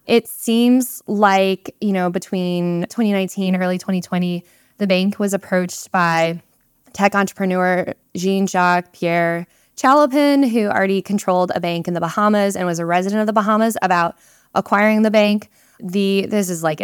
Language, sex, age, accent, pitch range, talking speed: English, female, 20-39, American, 180-215 Hz, 150 wpm